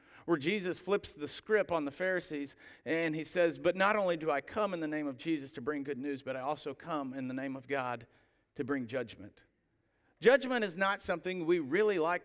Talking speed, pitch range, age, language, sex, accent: 220 wpm, 145-195 Hz, 50-69, English, male, American